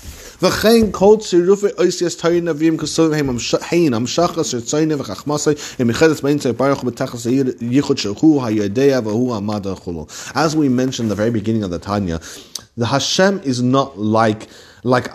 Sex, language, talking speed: male, English, 65 wpm